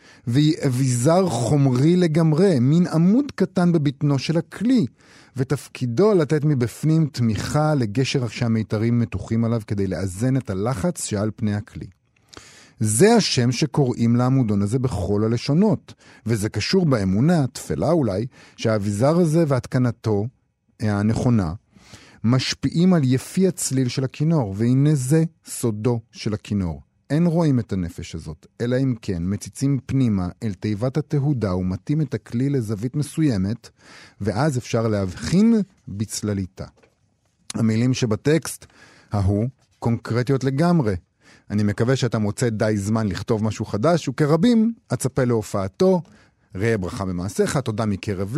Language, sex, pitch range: Hebrew, male, 110-150 Hz